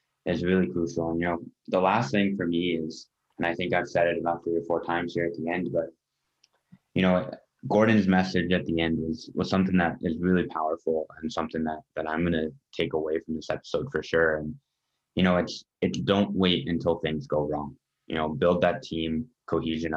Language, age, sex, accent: English, 20-39, male, American